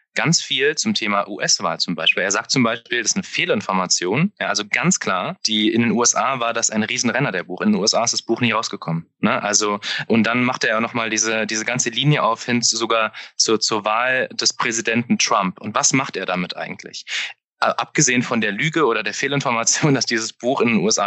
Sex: male